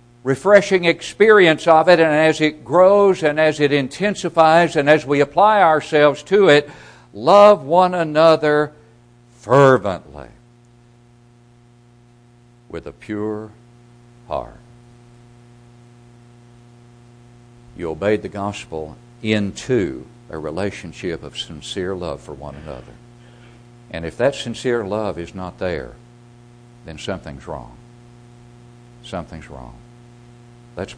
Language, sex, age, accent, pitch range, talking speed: English, male, 60-79, American, 95-120 Hz, 105 wpm